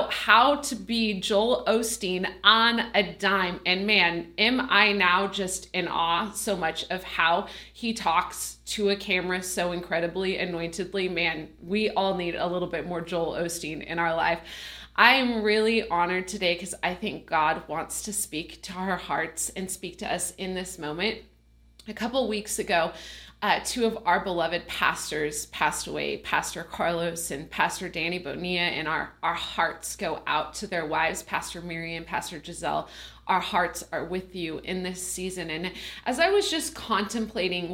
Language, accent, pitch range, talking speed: English, American, 175-210 Hz, 175 wpm